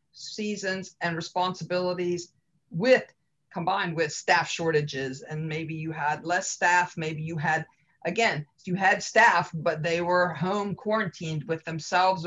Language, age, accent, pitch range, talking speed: English, 50-69, American, 155-195 Hz, 135 wpm